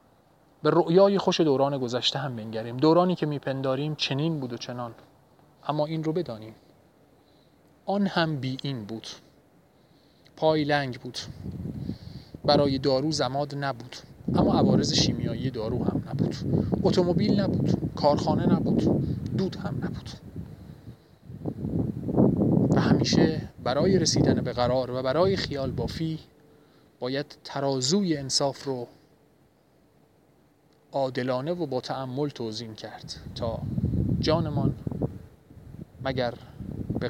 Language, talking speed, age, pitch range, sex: Persian, 110 wpm, 30-49, 125-150 Hz, male